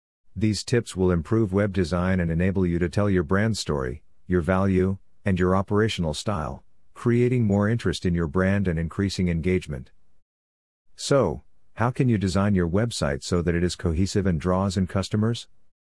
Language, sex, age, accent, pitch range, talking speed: English, male, 50-69, American, 85-100 Hz, 170 wpm